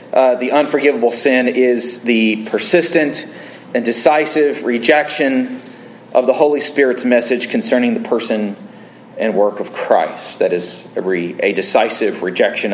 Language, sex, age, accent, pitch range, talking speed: English, male, 40-59, American, 140-180 Hz, 135 wpm